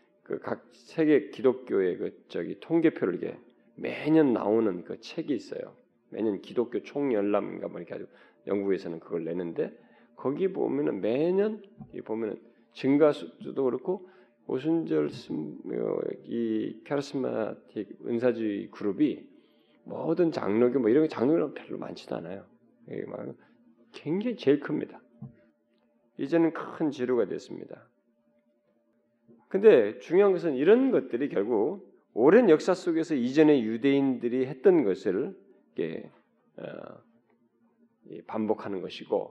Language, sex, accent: Korean, male, native